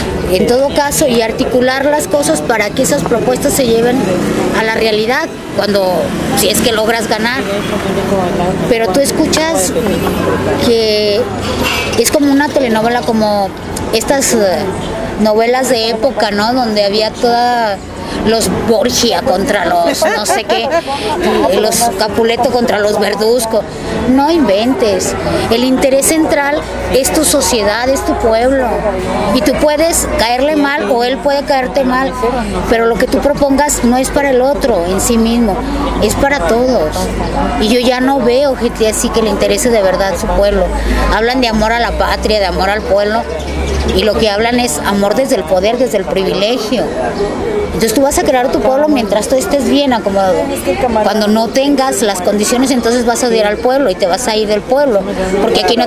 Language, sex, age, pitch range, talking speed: Spanish, female, 20-39, 215-265 Hz, 170 wpm